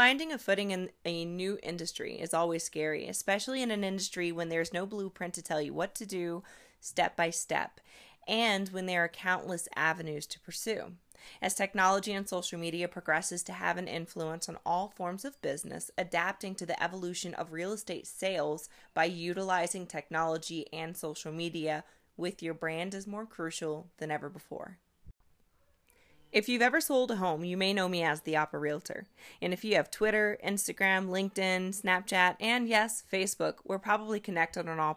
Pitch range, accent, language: 165-200 Hz, American, English